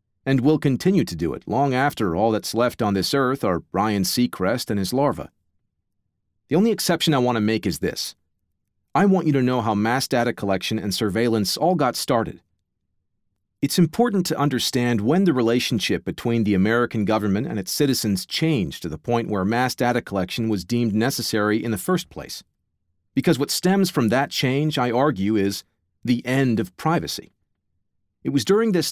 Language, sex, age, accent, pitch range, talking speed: English, male, 40-59, American, 100-140 Hz, 185 wpm